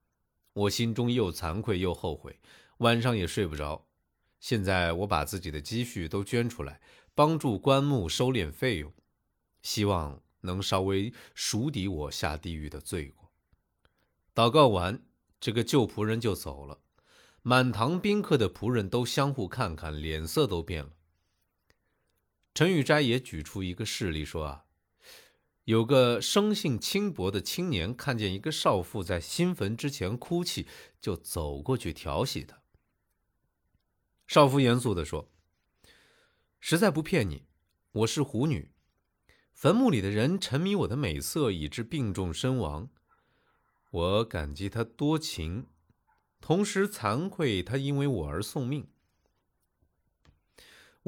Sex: male